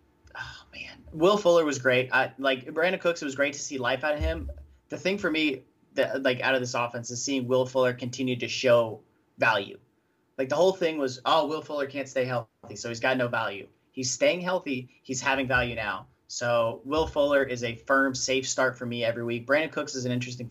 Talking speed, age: 220 wpm, 30-49